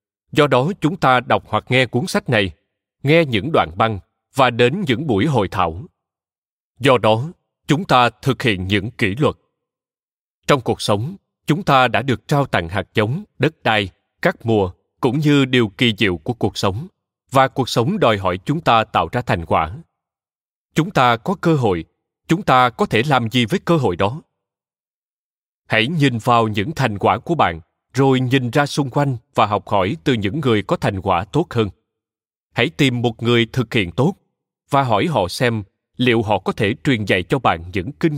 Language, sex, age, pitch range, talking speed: Vietnamese, male, 20-39, 105-140 Hz, 195 wpm